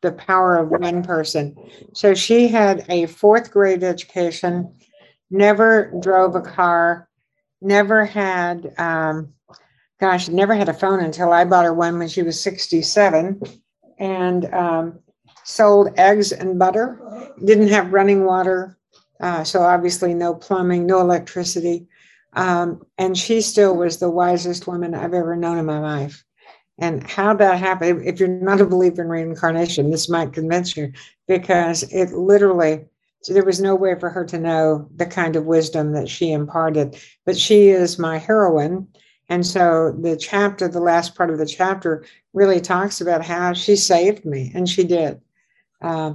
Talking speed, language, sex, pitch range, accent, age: 160 wpm, English, female, 165-190 Hz, American, 60-79